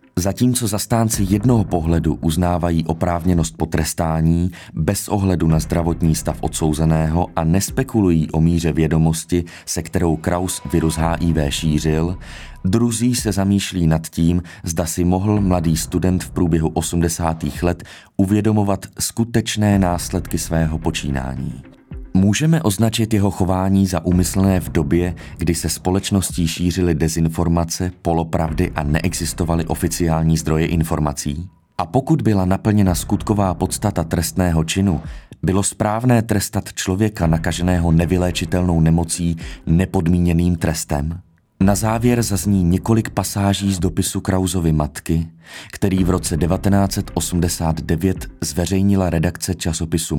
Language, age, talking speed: Czech, 30-49, 115 wpm